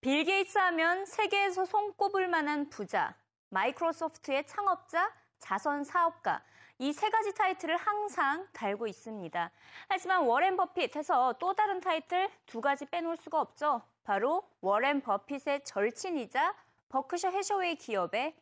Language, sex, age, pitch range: Korean, female, 20-39, 235-360 Hz